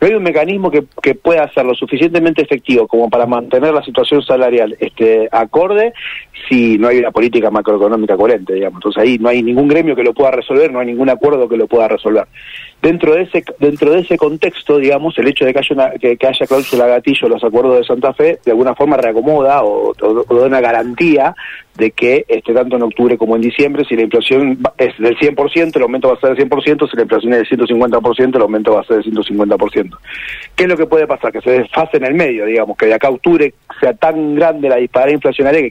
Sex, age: male, 40-59